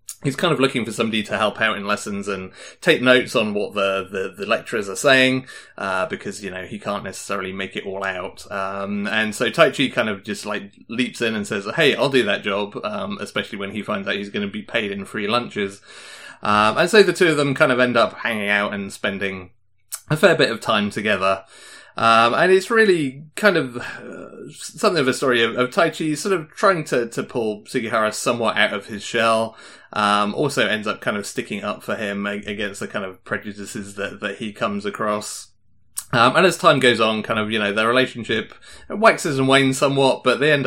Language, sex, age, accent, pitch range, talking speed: English, male, 30-49, British, 100-125 Hz, 225 wpm